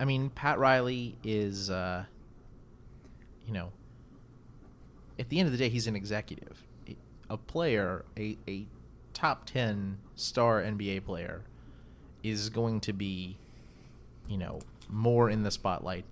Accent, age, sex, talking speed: American, 30-49, male, 135 wpm